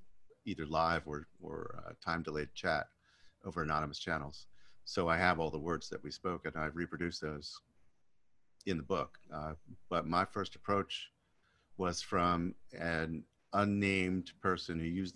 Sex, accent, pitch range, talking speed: male, American, 80-95 Hz, 150 wpm